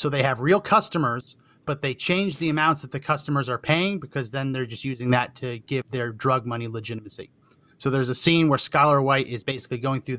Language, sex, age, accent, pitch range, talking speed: English, male, 30-49, American, 125-150 Hz, 225 wpm